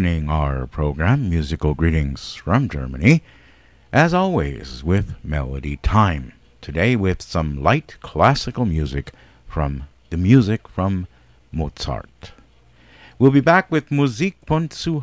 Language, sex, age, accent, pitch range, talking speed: English, male, 50-69, American, 80-125 Hz, 115 wpm